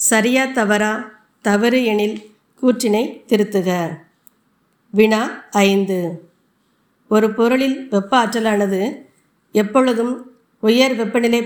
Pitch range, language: 195-235 Hz, Tamil